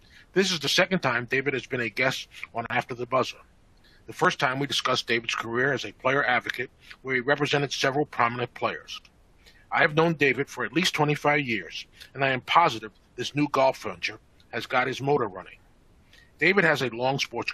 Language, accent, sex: English, American, male